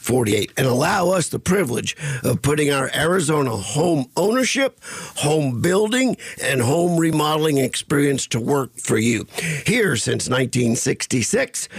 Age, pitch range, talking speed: 50-69, 130-175 Hz, 145 wpm